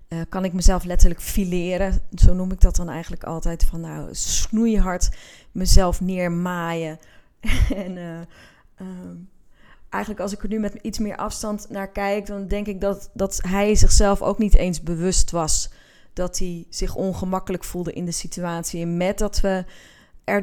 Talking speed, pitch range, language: 165 wpm, 175-205 Hz, Dutch